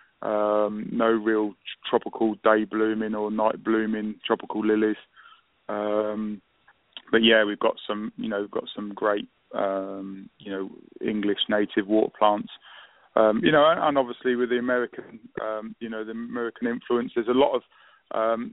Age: 20-39